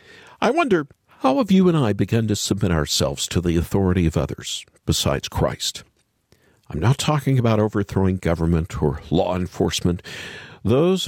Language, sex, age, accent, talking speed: English, male, 50-69, American, 150 wpm